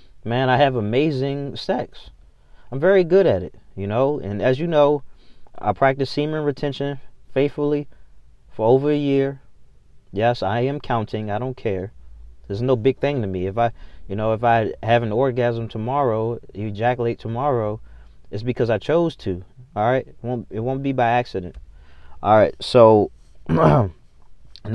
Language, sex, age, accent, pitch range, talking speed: English, male, 20-39, American, 90-130 Hz, 165 wpm